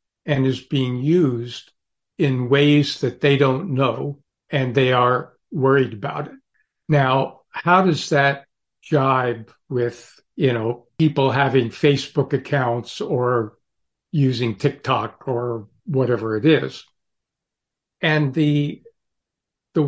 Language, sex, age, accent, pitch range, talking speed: English, male, 60-79, American, 125-150 Hz, 115 wpm